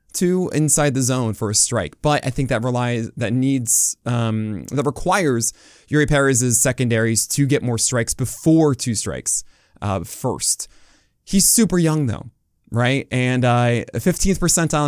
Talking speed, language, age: 155 wpm, English, 20-39